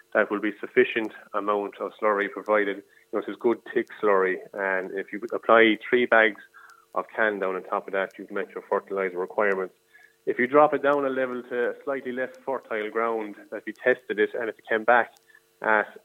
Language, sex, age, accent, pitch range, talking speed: English, male, 30-49, Irish, 100-130 Hz, 205 wpm